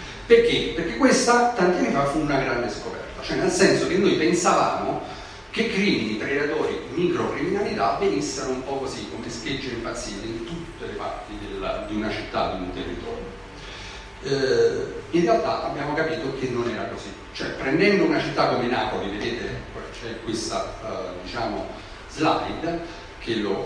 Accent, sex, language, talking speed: native, male, Italian, 150 wpm